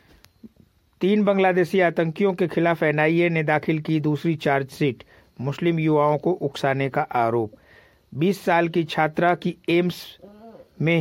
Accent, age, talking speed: native, 60-79, 130 wpm